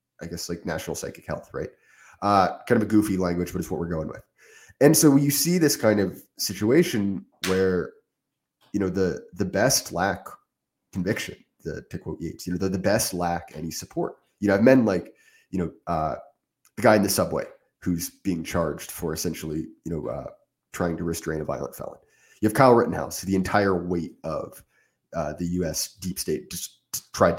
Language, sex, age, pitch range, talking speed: English, male, 30-49, 90-110 Hz, 195 wpm